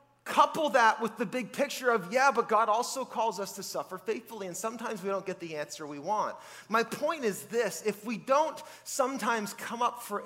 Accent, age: American, 30-49